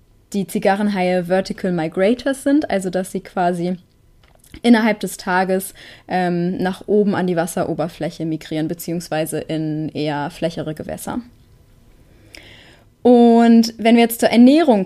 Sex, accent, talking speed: female, German, 120 wpm